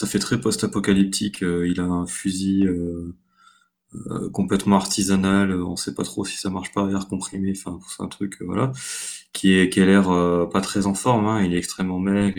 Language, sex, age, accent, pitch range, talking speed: French, male, 20-39, French, 95-115 Hz, 225 wpm